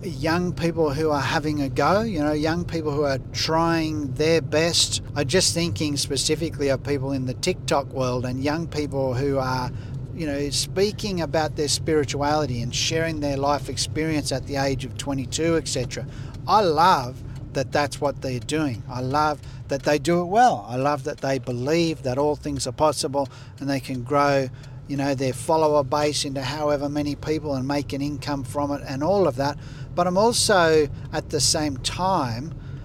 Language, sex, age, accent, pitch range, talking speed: English, male, 50-69, Australian, 130-155 Hz, 185 wpm